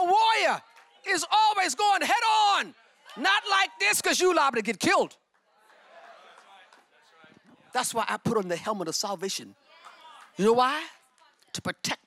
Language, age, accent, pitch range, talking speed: English, 40-59, American, 185-255 Hz, 145 wpm